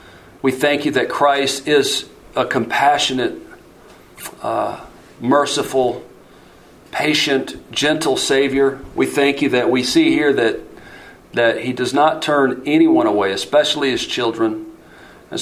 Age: 40-59